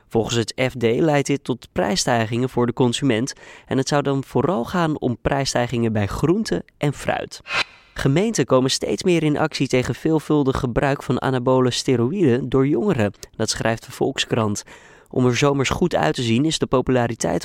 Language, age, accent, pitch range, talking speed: Dutch, 20-39, Dutch, 115-150 Hz, 170 wpm